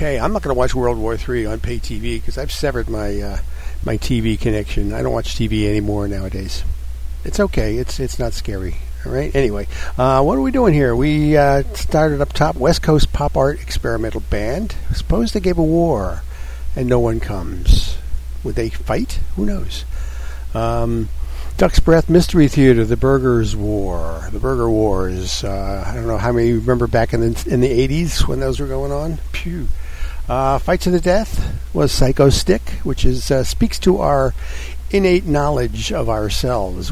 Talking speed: 185 wpm